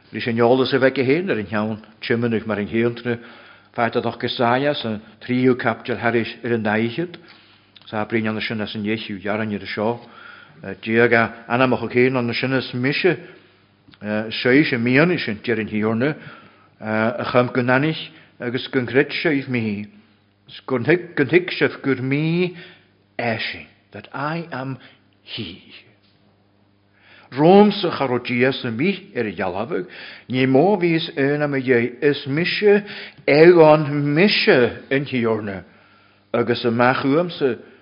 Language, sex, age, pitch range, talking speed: English, male, 60-79, 105-135 Hz, 85 wpm